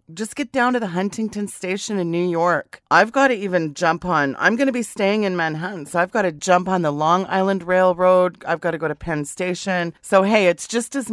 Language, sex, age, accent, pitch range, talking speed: English, female, 40-59, American, 160-195 Hz, 245 wpm